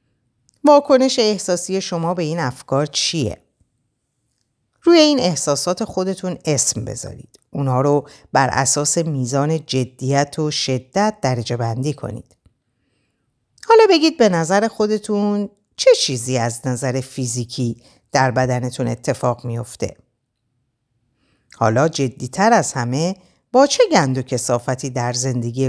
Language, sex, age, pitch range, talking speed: Persian, female, 50-69, 125-175 Hz, 115 wpm